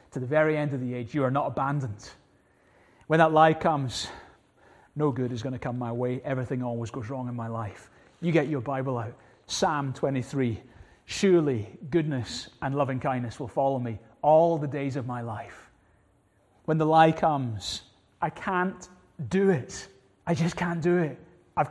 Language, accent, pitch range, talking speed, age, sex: English, British, 130-170 Hz, 180 wpm, 30-49, male